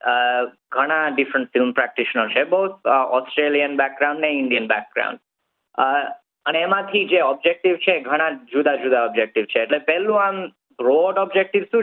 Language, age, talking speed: Gujarati, 20-39, 135 wpm